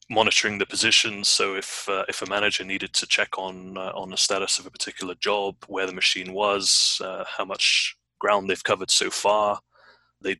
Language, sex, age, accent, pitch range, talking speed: English, male, 30-49, British, 95-105 Hz, 195 wpm